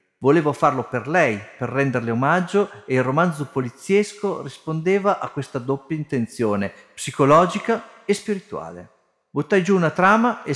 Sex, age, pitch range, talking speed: male, 50-69, 120-180 Hz, 135 wpm